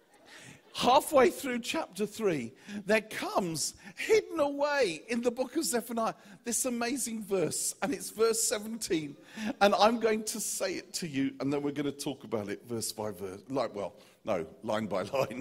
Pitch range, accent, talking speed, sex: 135-215 Hz, British, 175 wpm, male